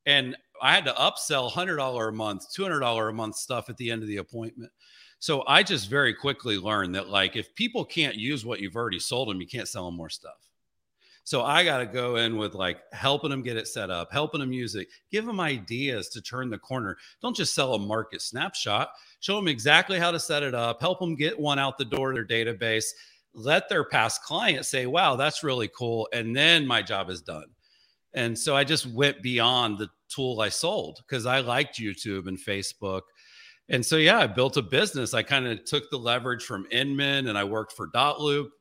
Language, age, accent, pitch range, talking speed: English, 40-59, American, 110-135 Hz, 220 wpm